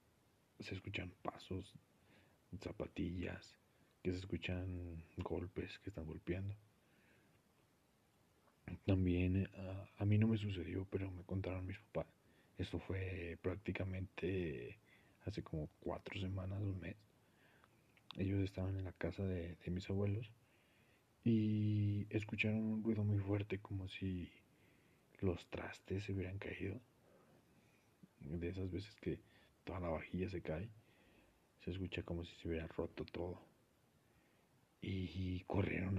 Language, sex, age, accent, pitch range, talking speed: Spanish, male, 40-59, Mexican, 85-100 Hz, 125 wpm